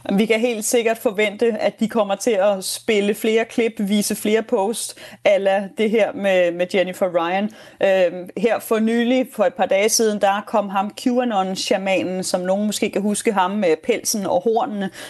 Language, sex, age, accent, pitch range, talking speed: Danish, female, 30-49, native, 195-235 Hz, 175 wpm